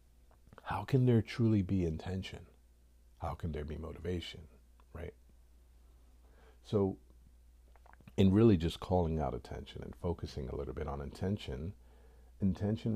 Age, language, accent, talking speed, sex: 50-69, English, American, 125 wpm, male